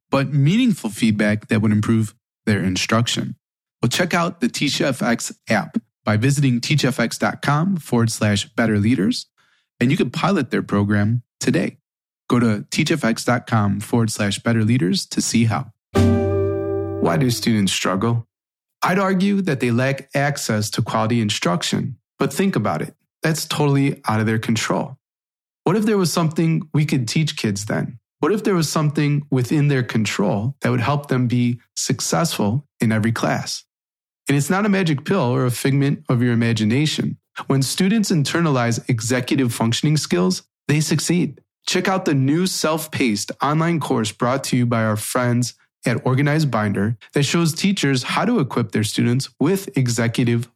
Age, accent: 20-39, American